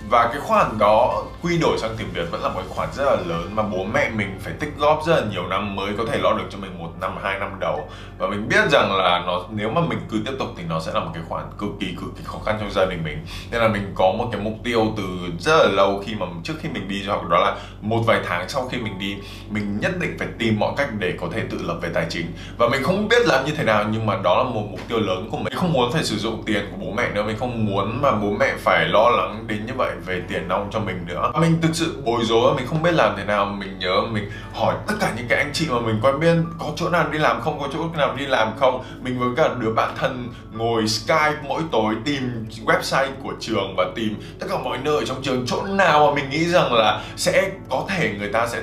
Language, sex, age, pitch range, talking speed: Vietnamese, male, 20-39, 100-130 Hz, 285 wpm